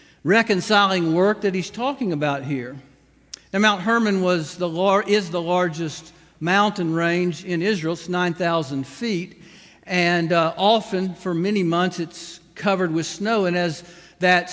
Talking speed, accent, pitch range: 135 wpm, American, 160-200 Hz